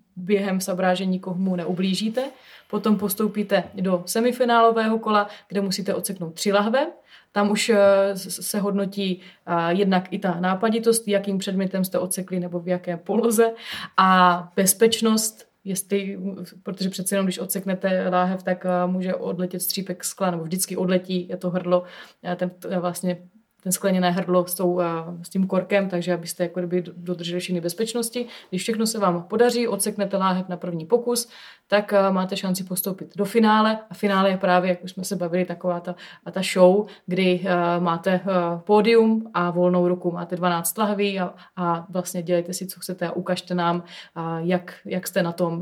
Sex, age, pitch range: female, 20-39, 180-200 Hz